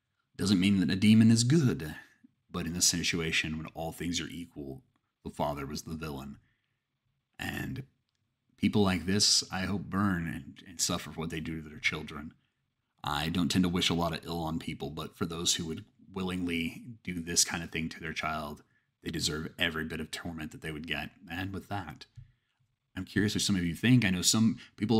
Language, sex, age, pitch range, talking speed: English, male, 30-49, 85-110 Hz, 210 wpm